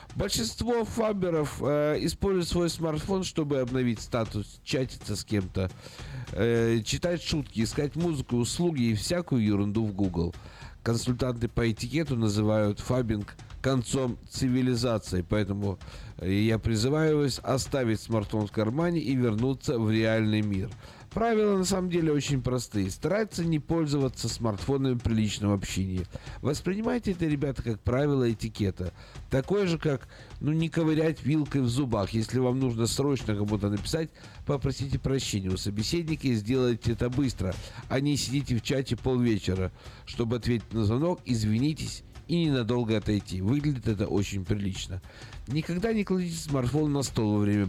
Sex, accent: male, native